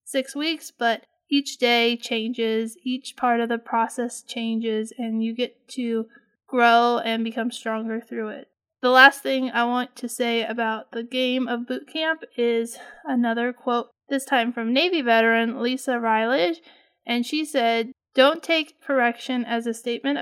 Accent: American